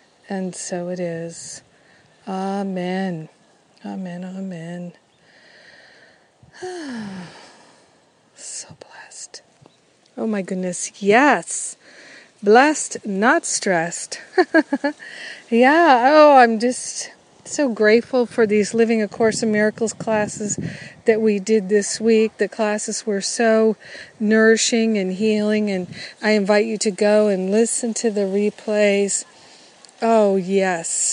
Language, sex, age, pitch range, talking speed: English, female, 40-59, 195-225 Hz, 105 wpm